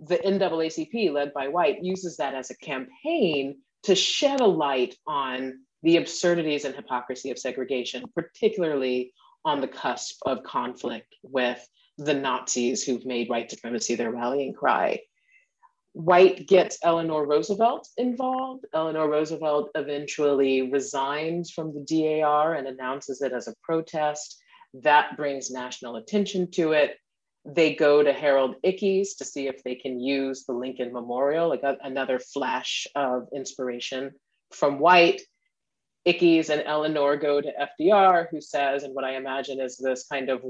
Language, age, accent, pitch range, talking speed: English, 40-59, American, 135-170 Hz, 145 wpm